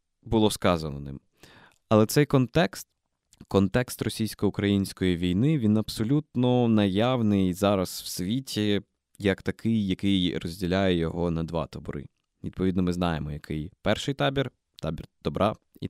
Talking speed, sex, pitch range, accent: 120 wpm, male, 95-120 Hz, native